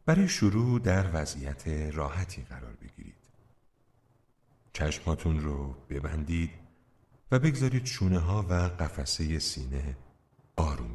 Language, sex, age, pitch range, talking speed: Persian, male, 50-69, 75-120 Hz, 100 wpm